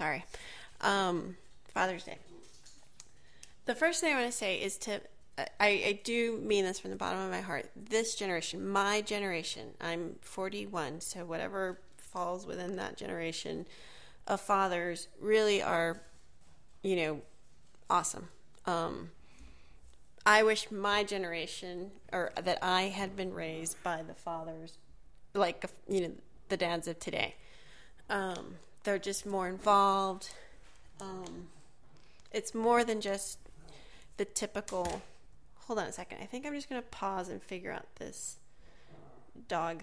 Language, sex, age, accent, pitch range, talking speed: English, female, 30-49, American, 175-210 Hz, 135 wpm